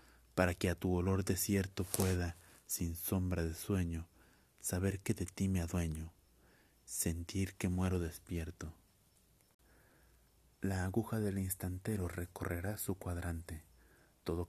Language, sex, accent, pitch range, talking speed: Spanish, male, Mexican, 85-95 Hz, 120 wpm